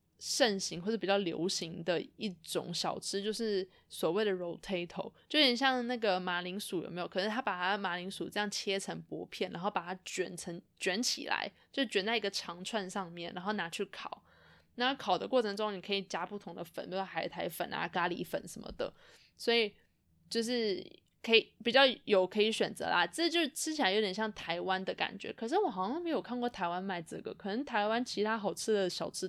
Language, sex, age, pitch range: Chinese, female, 20-39, 185-235 Hz